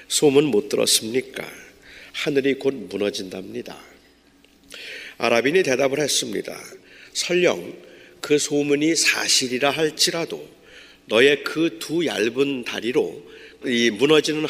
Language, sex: Korean, male